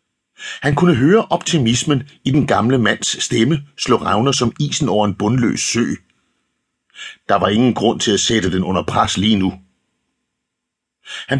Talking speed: 160 wpm